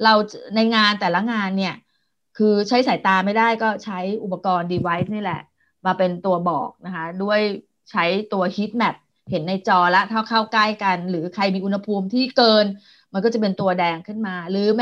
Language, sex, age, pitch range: Thai, female, 30-49, 190-240 Hz